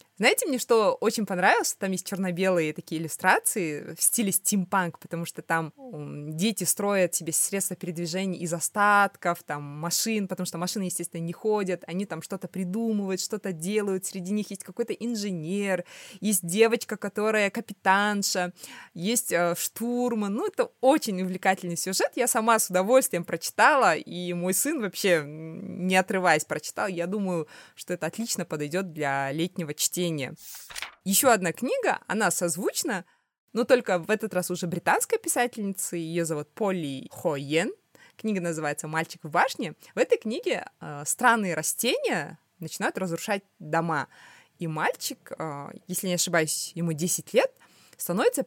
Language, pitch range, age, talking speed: Russian, 170-215 Hz, 20-39, 145 wpm